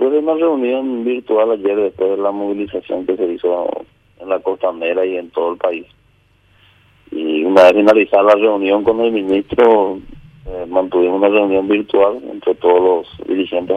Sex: male